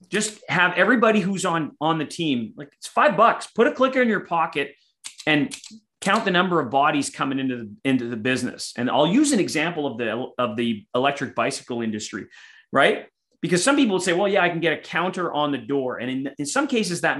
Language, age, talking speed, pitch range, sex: English, 30-49, 225 wpm, 140-195 Hz, male